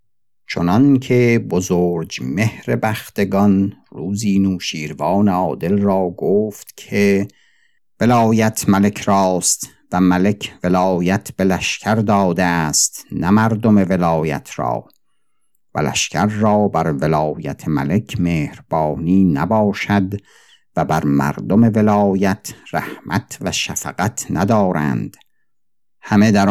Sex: male